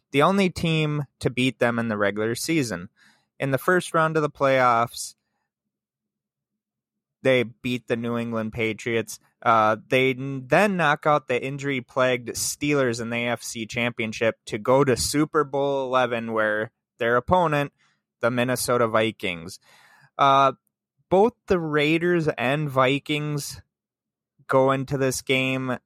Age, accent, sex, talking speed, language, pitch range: 20-39, American, male, 130 wpm, English, 110-135 Hz